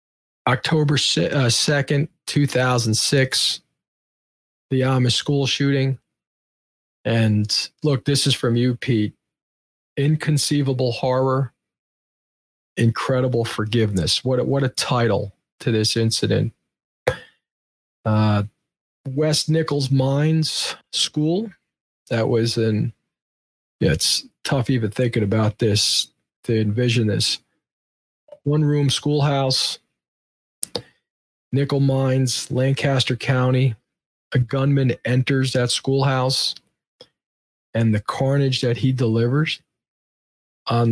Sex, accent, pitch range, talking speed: male, American, 110-135 Hz, 95 wpm